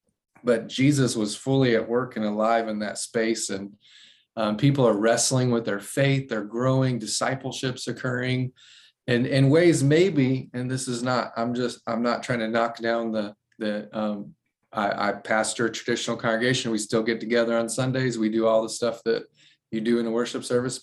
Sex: male